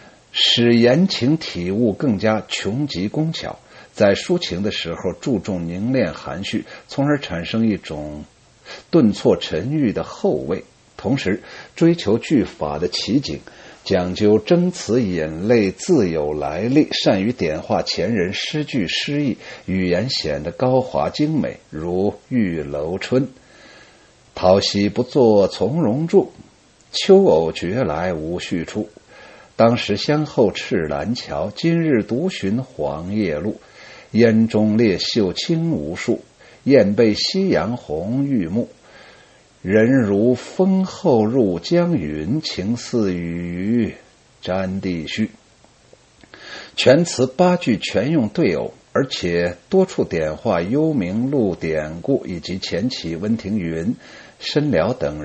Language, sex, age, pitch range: Chinese, male, 60-79, 90-145 Hz